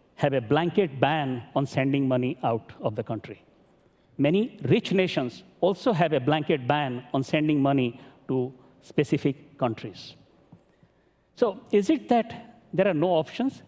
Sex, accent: male, Indian